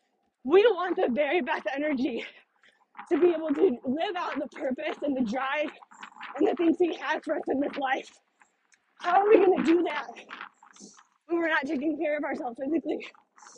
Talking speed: 185 wpm